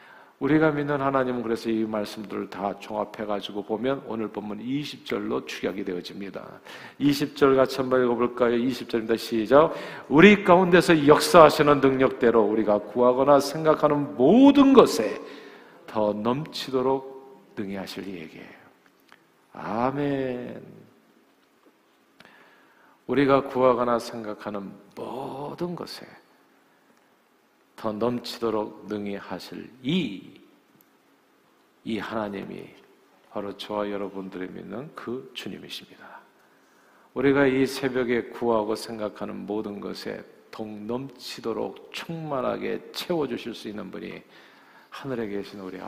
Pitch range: 105-135 Hz